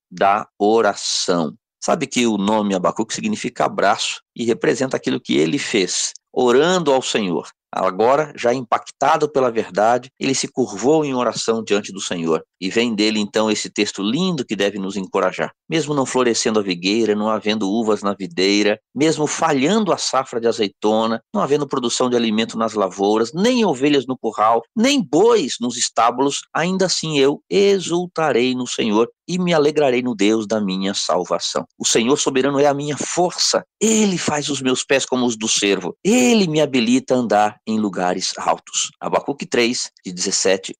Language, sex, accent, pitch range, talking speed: Portuguese, male, Brazilian, 105-155 Hz, 170 wpm